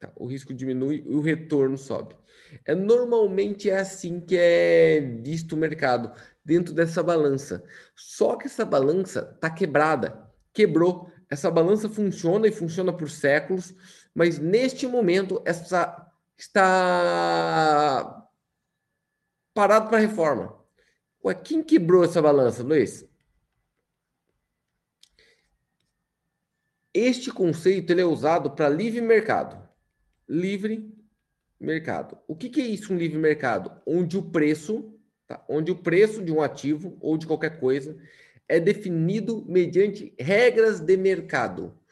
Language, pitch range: Portuguese, 155-210 Hz